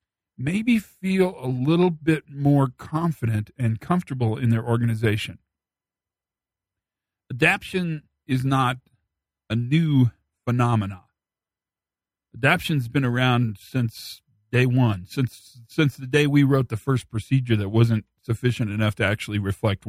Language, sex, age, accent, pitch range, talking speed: English, male, 50-69, American, 110-150 Hz, 120 wpm